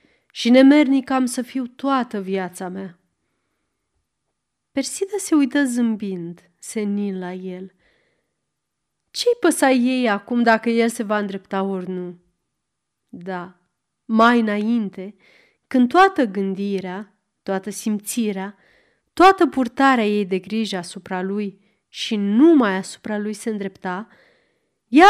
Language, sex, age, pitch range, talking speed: Romanian, female, 30-49, 190-265 Hz, 115 wpm